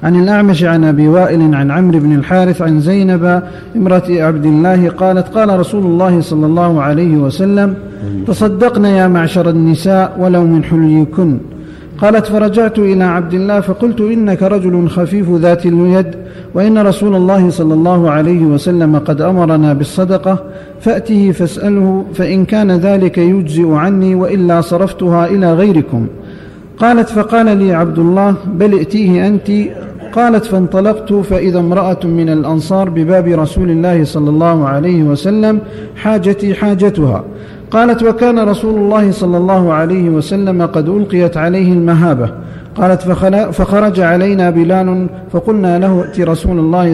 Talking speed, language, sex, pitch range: 135 wpm, Arabic, male, 165-195 Hz